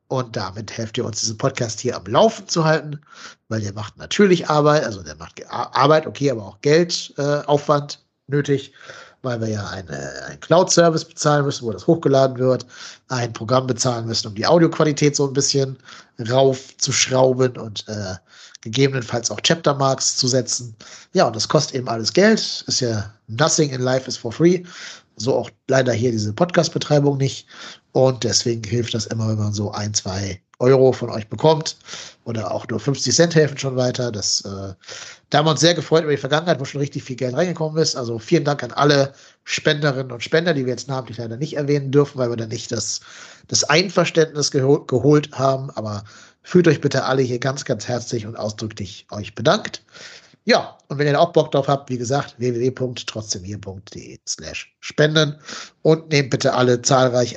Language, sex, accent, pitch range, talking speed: German, male, German, 110-150 Hz, 185 wpm